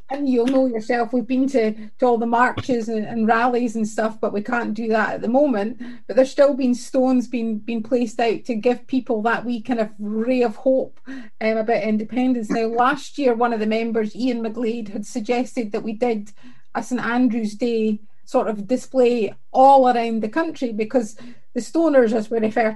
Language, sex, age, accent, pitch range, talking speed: English, female, 30-49, British, 225-260 Hz, 200 wpm